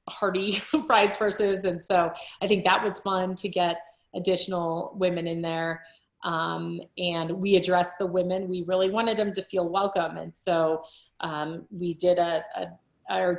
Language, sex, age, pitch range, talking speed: English, female, 30-49, 170-205 Hz, 165 wpm